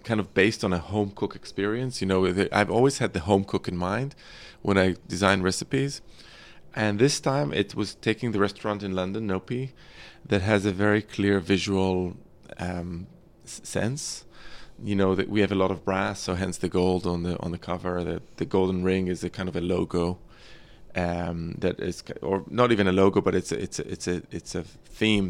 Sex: male